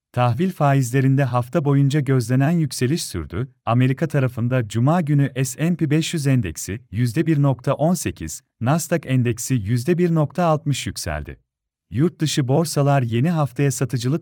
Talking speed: 100 wpm